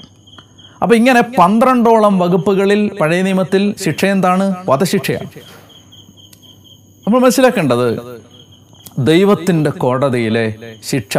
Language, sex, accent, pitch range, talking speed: Malayalam, male, native, 115-190 Hz, 75 wpm